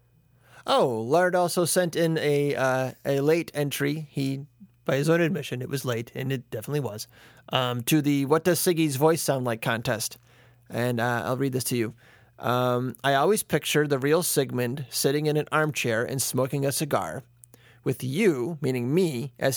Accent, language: American, English